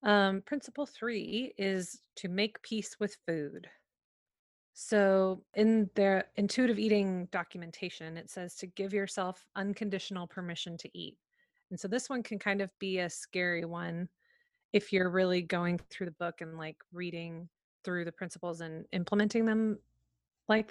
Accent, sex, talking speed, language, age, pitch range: American, female, 150 wpm, English, 30-49, 175-225 Hz